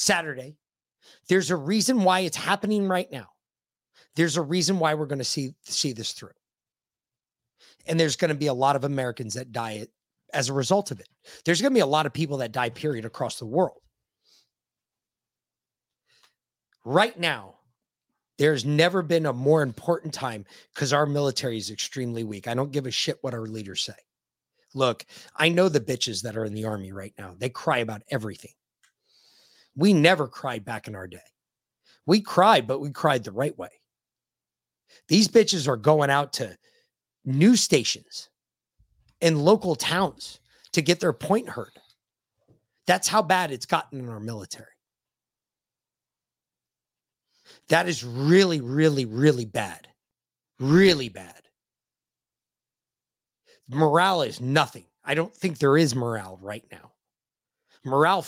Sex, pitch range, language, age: male, 120-170 Hz, English, 30-49